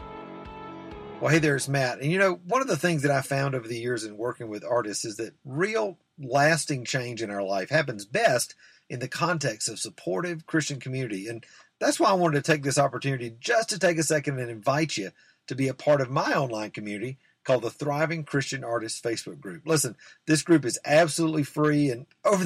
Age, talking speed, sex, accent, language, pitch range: 50-69, 210 wpm, male, American, English, 120-160 Hz